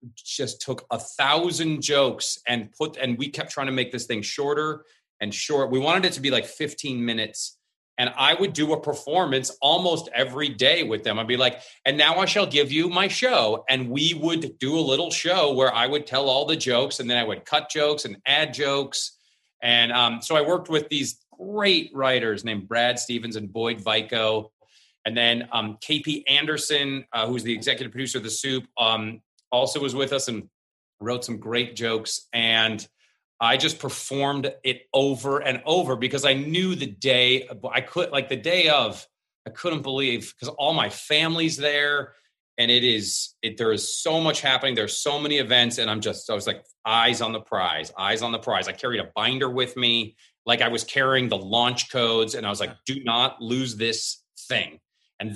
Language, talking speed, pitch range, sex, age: English, 200 wpm, 115-150 Hz, male, 30-49